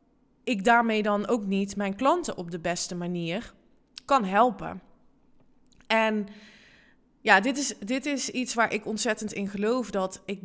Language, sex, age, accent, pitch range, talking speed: Dutch, female, 20-39, Dutch, 195-255 Hz, 150 wpm